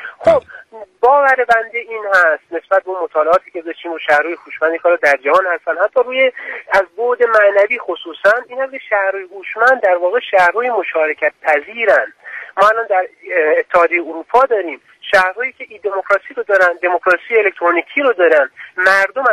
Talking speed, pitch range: 155 wpm, 185-245 Hz